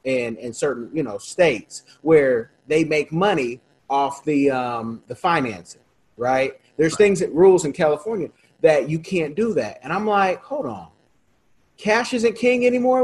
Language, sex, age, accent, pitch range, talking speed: English, male, 30-49, American, 155-235 Hz, 165 wpm